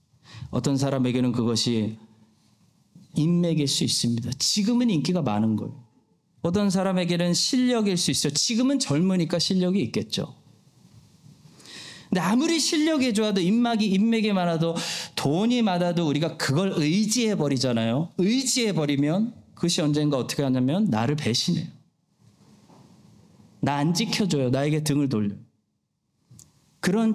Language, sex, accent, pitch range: Korean, male, native, 135-190 Hz